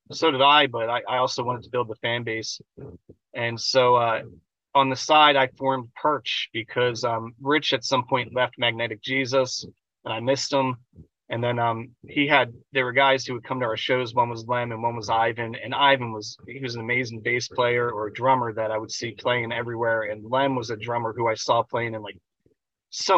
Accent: American